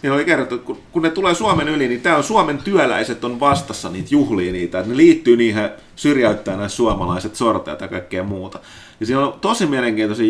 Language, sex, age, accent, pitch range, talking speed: Finnish, male, 30-49, native, 110-175 Hz, 200 wpm